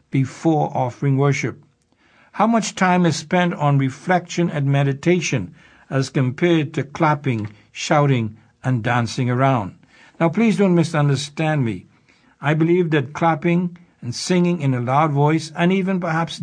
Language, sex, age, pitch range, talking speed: English, male, 60-79, 130-165 Hz, 140 wpm